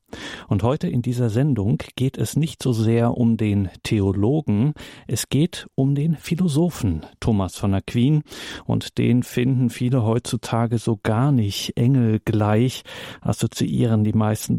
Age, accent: 40-59, German